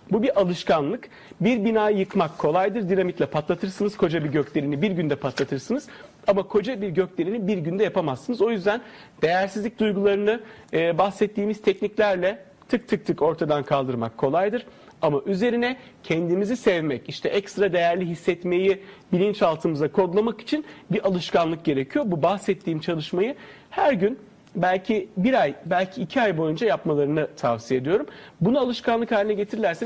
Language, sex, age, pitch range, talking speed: Turkish, male, 40-59, 170-225 Hz, 135 wpm